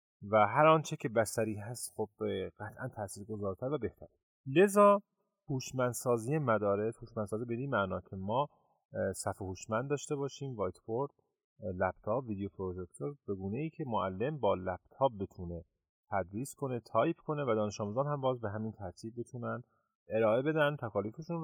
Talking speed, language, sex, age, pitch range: 145 wpm, Persian, male, 30-49, 100-145 Hz